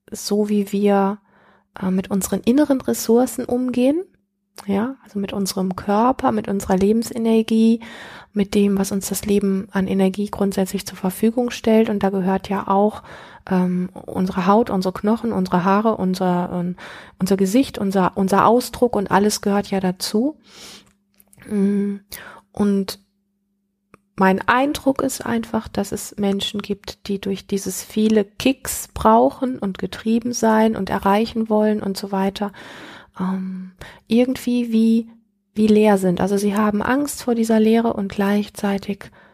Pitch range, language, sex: 195-225 Hz, German, female